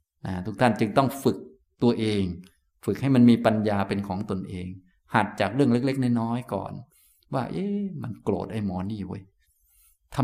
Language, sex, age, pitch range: Thai, male, 20-39, 100-125 Hz